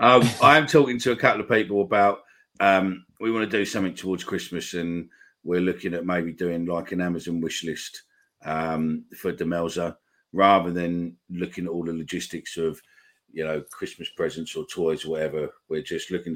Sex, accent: male, British